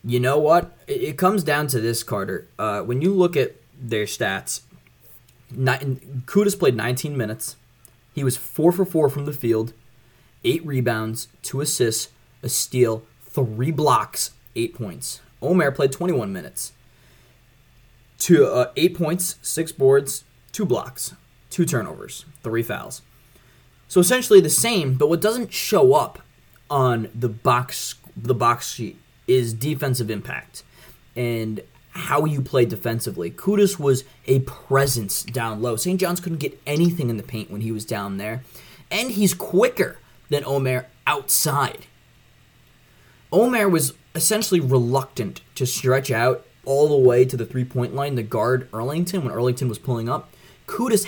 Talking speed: 145 wpm